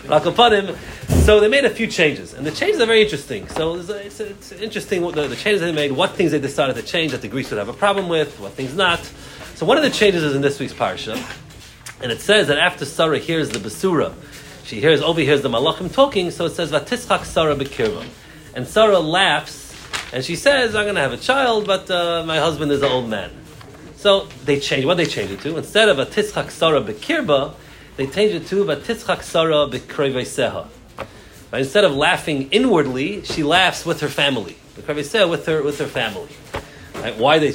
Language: English